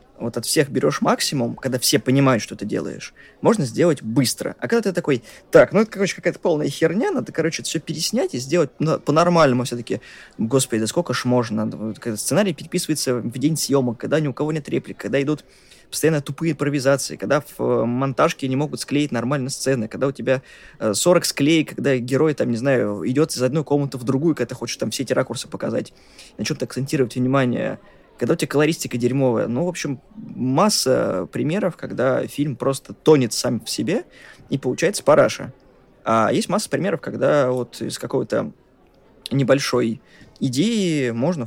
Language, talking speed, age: Russian, 180 wpm, 20-39